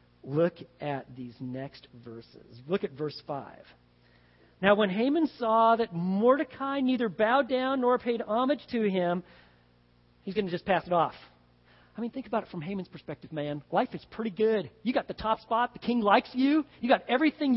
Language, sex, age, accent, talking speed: English, male, 40-59, American, 190 wpm